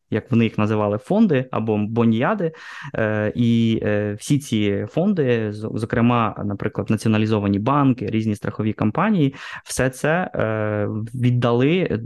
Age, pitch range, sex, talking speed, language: 20-39, 110-130 Hz, male, 105 wpm, Ukrainian